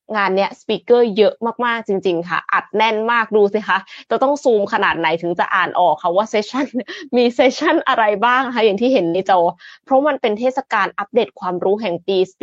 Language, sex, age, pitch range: Thai, female, 20-39, 190-245 Hz